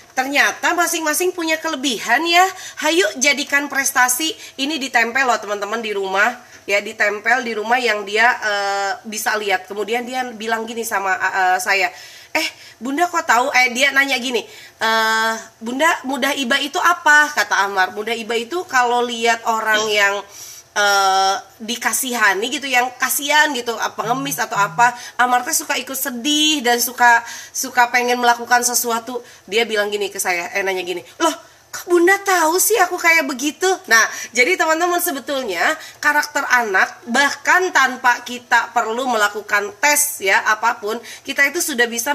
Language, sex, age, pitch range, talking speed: Indonesian, female, 20-39, 225-285 Hz, 150 wpm